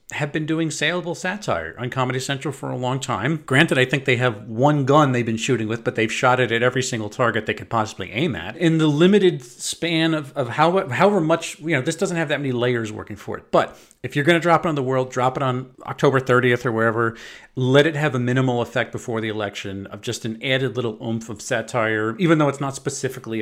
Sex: male